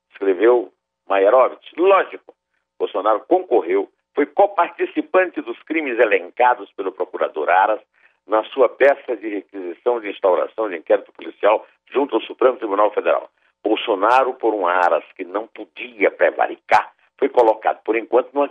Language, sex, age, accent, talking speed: Portuguese, male, 60-79, Brazilian, 135 wpm